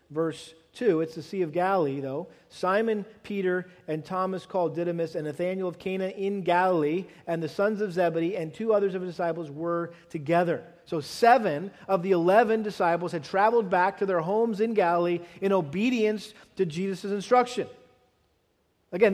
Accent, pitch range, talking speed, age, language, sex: American, 155-195 Hz, 165 wpm, 40-59, English, male